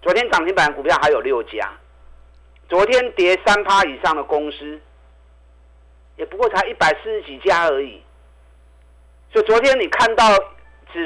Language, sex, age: Chinese, male, 50-69